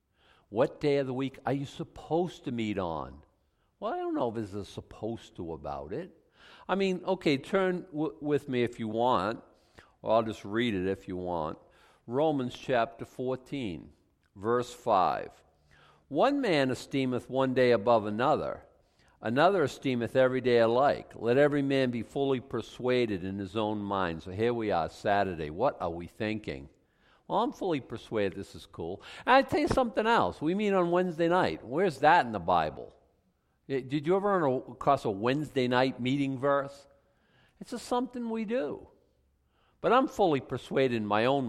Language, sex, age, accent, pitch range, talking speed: English, male, 50-69, American, 110-150 Hz, 170 wpm